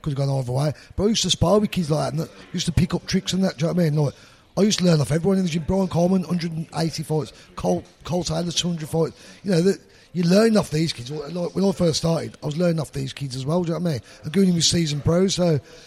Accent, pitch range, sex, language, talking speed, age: British, 140-185 Hz, male, English, 305 wpm, 30-49